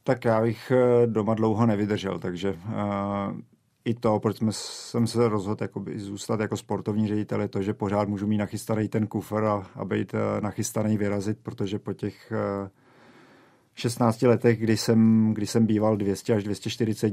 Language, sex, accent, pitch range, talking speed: Czech, male, native, 105-110 Hz, 160 wpm